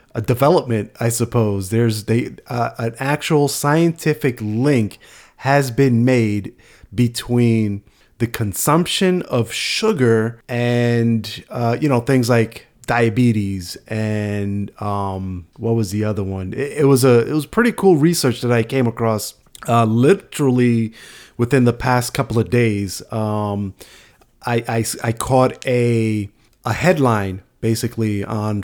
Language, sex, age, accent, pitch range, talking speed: English, male, 30-49, American, 110-130 Hz, 135 wpm